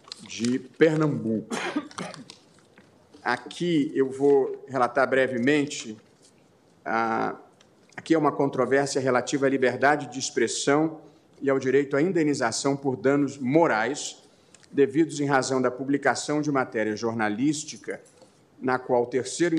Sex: male